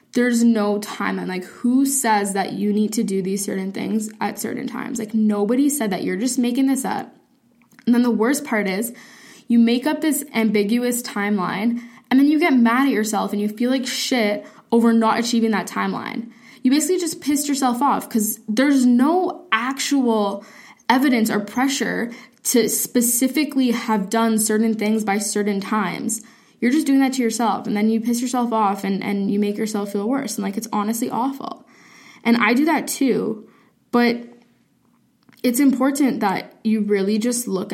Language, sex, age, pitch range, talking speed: English, female, 10-29, 215-255 Hz, 180 wpm